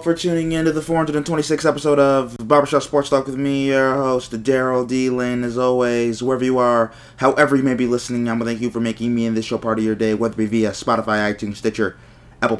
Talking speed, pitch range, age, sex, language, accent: 240 wpm, 95-120 Hz, 20-39, male, English, American